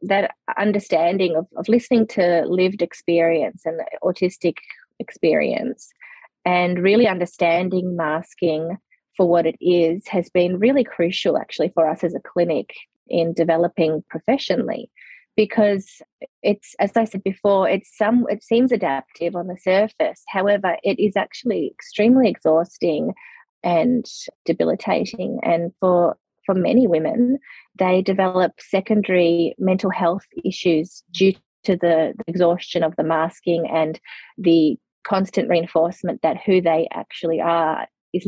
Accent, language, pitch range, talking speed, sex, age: Australian, English, 165-200 Hz, 130 wpm, female, 20-39